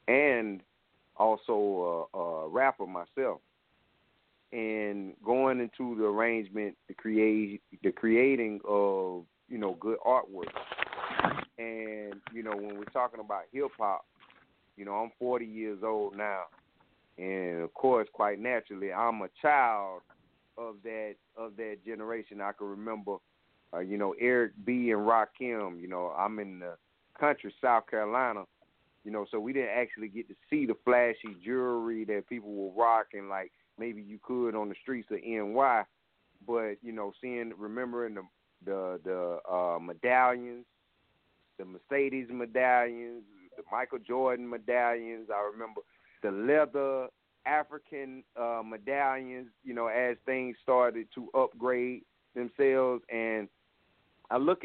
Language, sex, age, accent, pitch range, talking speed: English, male, 40-59, American, 105-125 Hz, 140 wpm